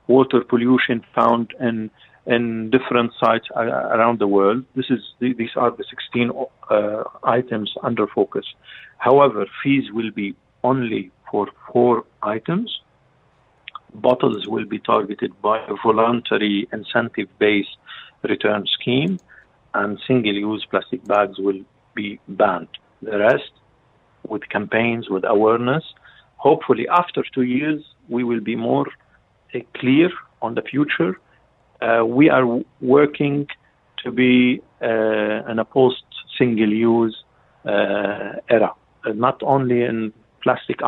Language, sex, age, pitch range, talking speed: English, male, 50-69, 110-130 Hz, 115 wpm